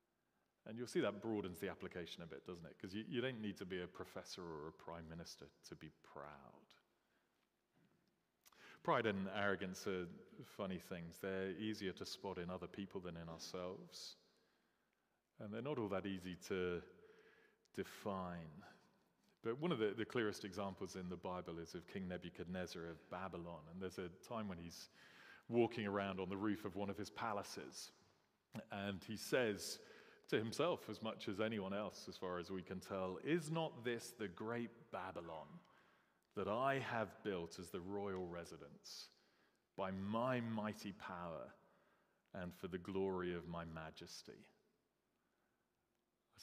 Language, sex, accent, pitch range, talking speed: English, male, British, 85-100 Hz, 160 wpm